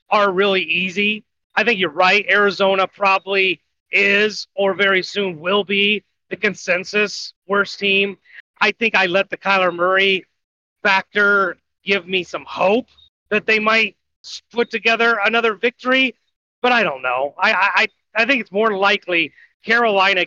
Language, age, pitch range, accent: English, 30-49, 175-215 Hz, American